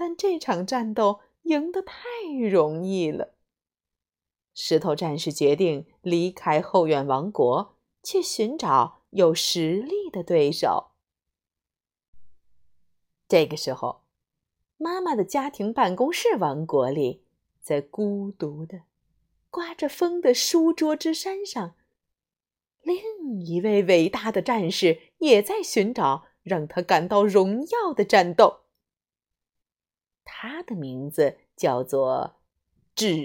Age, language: 30-49, Chinese